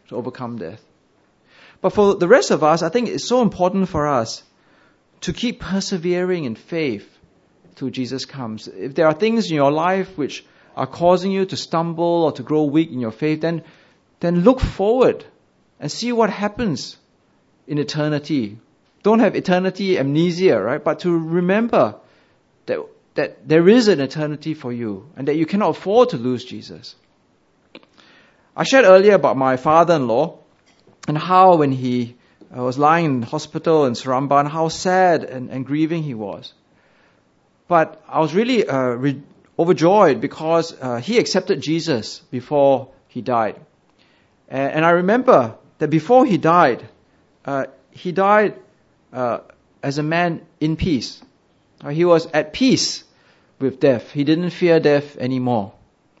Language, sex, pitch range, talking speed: English, male, 135-185 Hz, 155 wpm